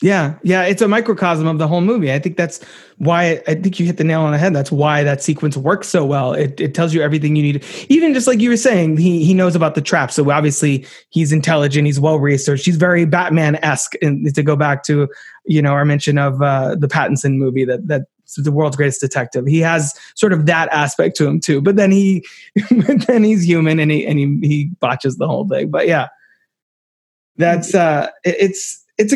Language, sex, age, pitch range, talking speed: English, male, 20-39, 145-185 Hz, 230 wpm